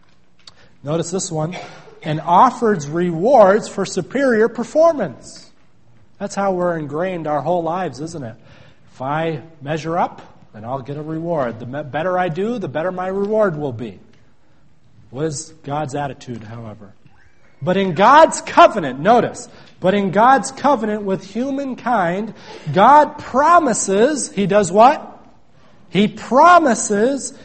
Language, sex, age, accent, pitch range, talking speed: English, male, 40-59, American, 165-240 Hz, 130 wpm